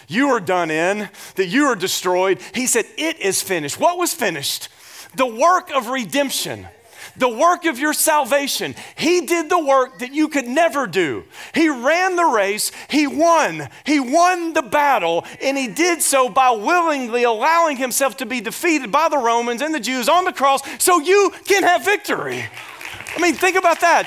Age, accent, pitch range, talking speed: 40-59, American, 260-340 Hz, 185 wpm